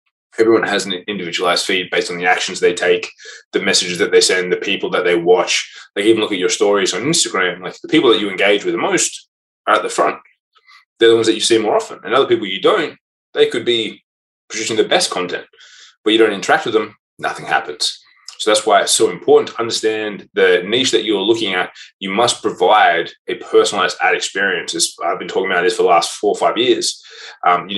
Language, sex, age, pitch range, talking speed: English, male, 20-39, 350-440 Hz, 230 wpm